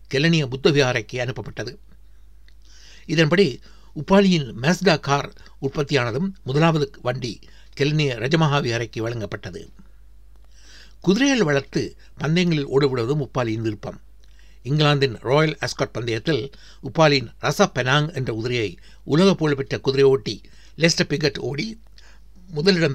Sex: male